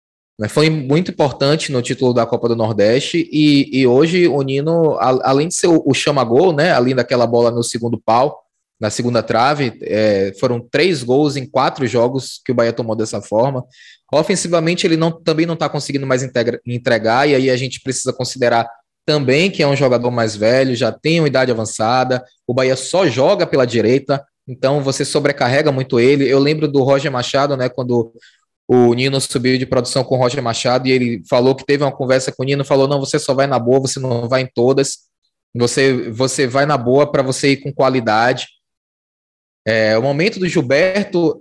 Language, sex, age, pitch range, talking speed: Portuguese, male, 20-39, 125-145 Hz, 195 wpm